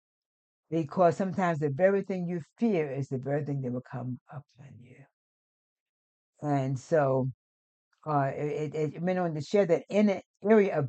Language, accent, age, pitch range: English, American, 60-79, 135-180 Hz